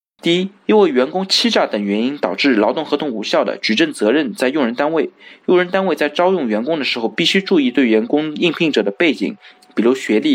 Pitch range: 120-180 Hz